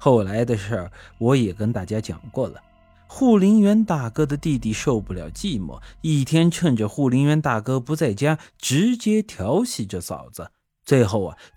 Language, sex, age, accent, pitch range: Chinese, male, 30-49, native, 100-160 Hz